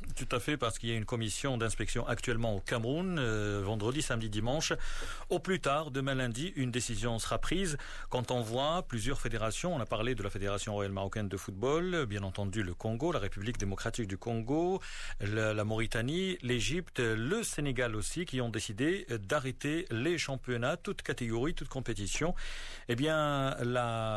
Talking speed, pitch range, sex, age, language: 175 wpm, 115-150 Hz, male, 40-59, Arabic